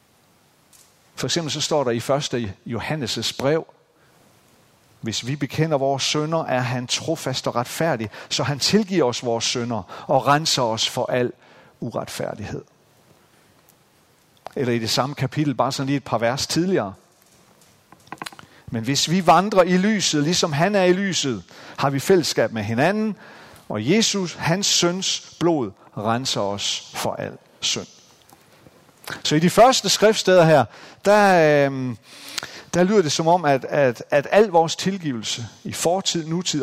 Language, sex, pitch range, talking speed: Danish, male, 120-160 Hz, 145 wpm